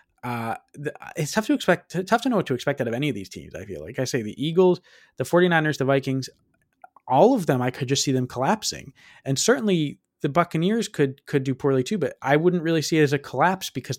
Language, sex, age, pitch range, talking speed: English, male, 20-39, 120-160 Hz, 240 wpm